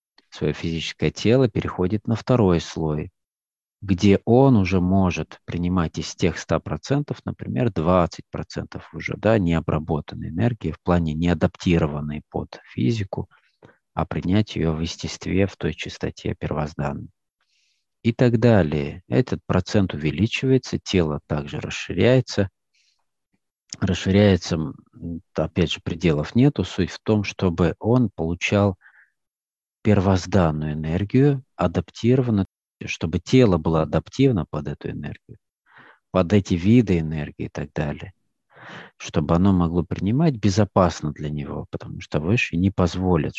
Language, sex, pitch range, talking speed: Russian, male, 80-105 Hz, 115 wpm